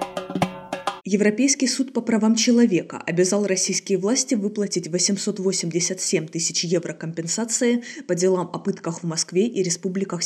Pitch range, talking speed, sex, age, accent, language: 165-210 Hz, 125 wpm, female, 20-39, native, Russian